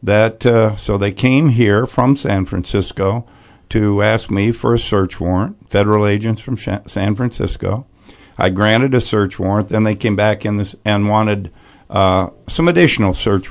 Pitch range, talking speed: 100-125 Hz, 170 wpm